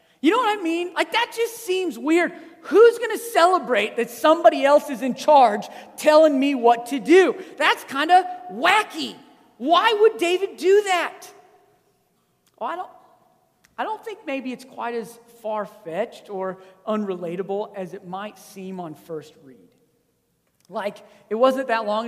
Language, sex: English, male